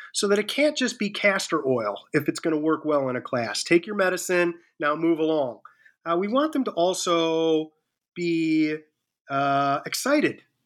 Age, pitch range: 30-49, 150-205 Hz